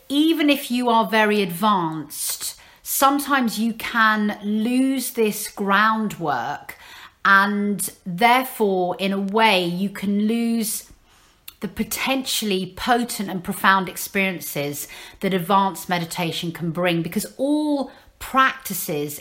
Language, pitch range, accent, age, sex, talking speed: English, 180-225 Hz, British, 40-59, female, 105 wpm